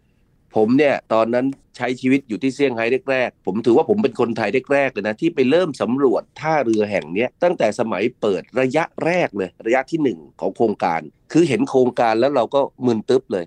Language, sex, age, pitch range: Thai, male, 30-49, 110-135 Hz